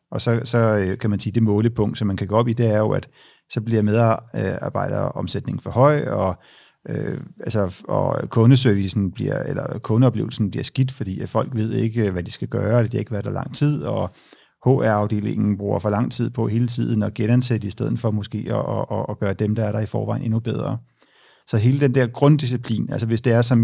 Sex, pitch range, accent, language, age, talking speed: male, 110-125 Hz, native, Danish, 40-59, 220 wpm